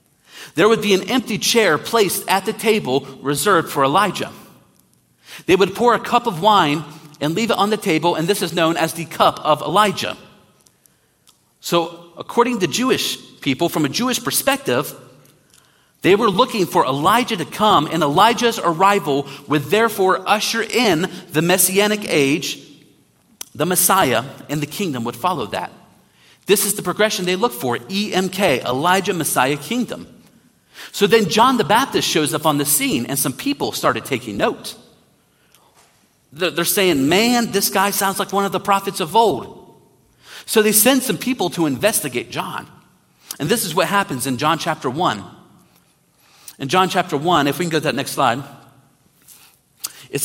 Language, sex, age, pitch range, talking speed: English, male, 40-59, 150-205 Hz, 165 wpm